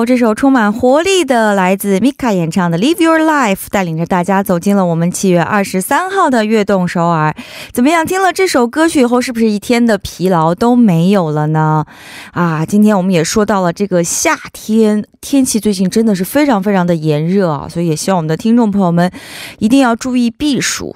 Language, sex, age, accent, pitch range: Korean, female, 20-39, Chinese, 175-255 Hz